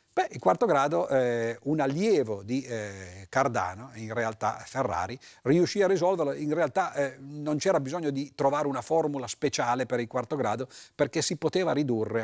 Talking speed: 170 wpm